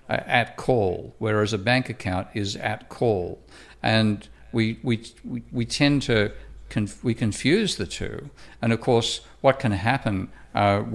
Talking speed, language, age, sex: 155 wpm, English, 50-69, male